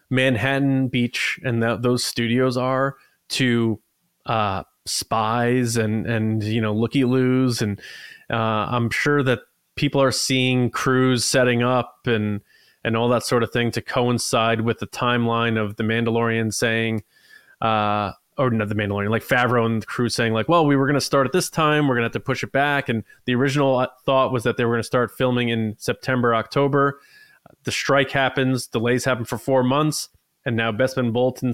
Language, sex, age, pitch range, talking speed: English, male, 20-39, 115-140 Hz, 190 wpm